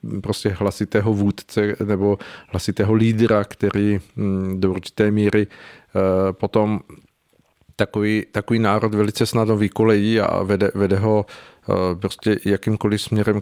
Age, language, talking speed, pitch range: 40-59, Czech, 105 wpm, 100-110 Hz